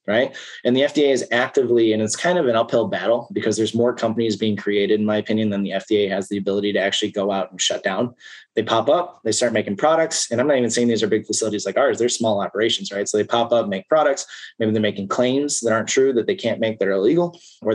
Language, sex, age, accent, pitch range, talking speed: English, male, 20-39, American, 105-125 Hz, 265 wpm